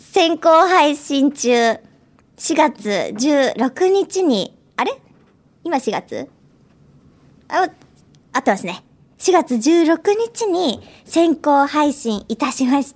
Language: Japanese